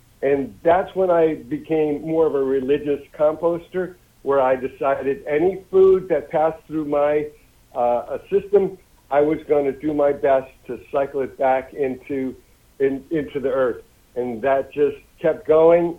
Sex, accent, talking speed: male, American, 160 wpm